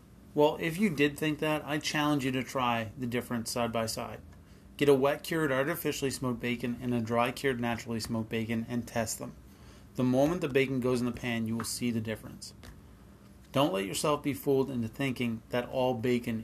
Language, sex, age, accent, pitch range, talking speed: English, male, 30-49, American, 115-140 Hz, 205 wpm